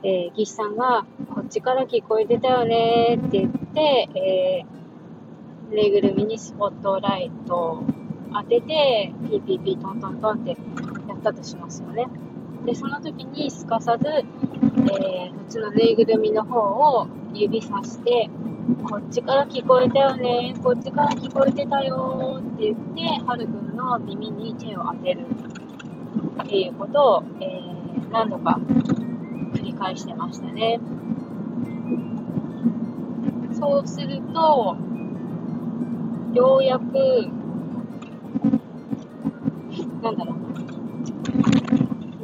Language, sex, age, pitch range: Japanese, female, 20-39, 220-255 Hz